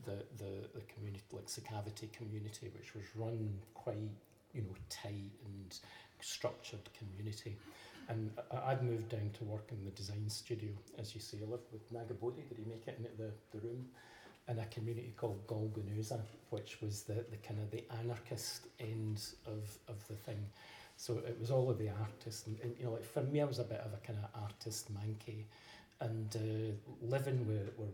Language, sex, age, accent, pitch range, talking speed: English, male, 40-59, British, 105-120 Hz, 190 wpm